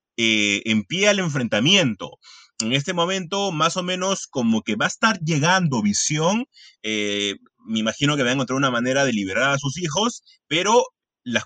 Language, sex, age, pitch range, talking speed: Spanish, male, 30-49, 135-190 Hz, 180 wpm